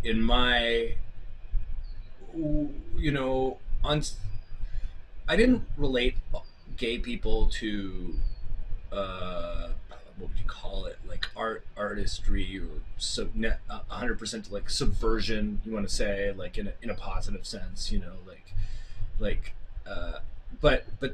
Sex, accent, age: male, American, 30-49